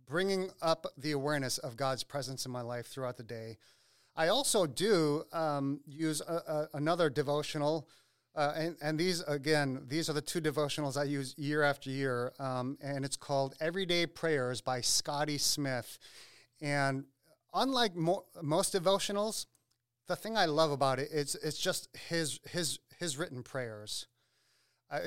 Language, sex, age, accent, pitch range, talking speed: English, male, 40-59, American, 135-165 Hz, 150 wpm